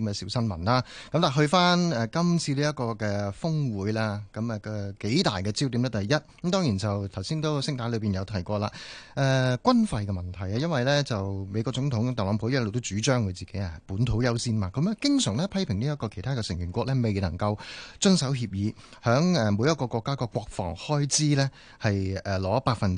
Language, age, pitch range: Chinese, 30-49, 105-145 Hz